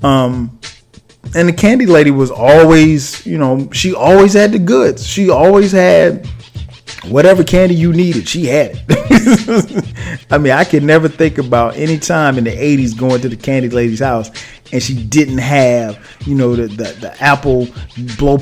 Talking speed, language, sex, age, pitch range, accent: 175 wpm, English, male, 30-49, 125-175 Hz, American